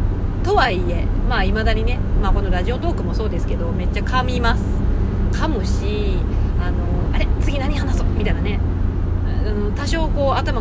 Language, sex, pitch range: Japanese, female, 75-95 Hz